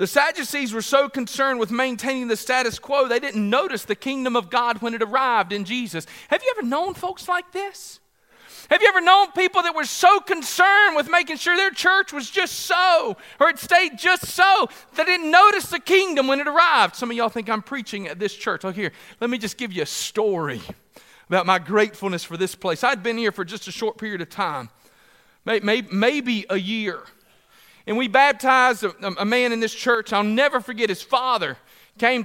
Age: 40-59